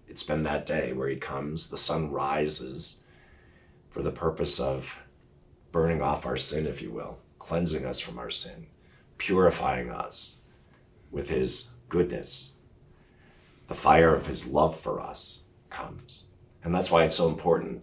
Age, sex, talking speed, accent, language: 40-59, male, 150 wpm, American, English